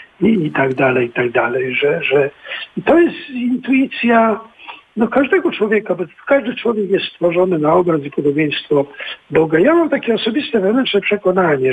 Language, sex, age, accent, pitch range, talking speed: Polish, male, 50-69, native, 160-270 Hz, 165 wpm